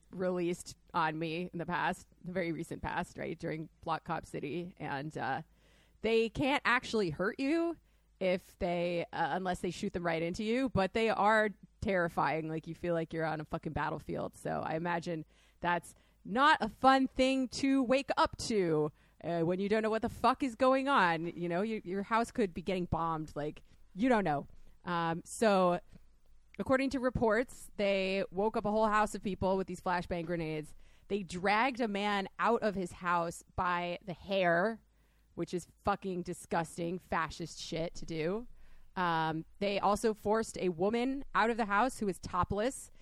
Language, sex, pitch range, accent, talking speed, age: English, female, 170-220 Hz, American, 180 wpm, 30-49